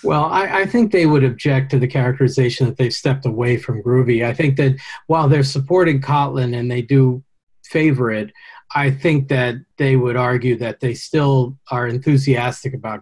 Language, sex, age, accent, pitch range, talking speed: English, male, 40-59, American, 125-145 Hz, 185 wpm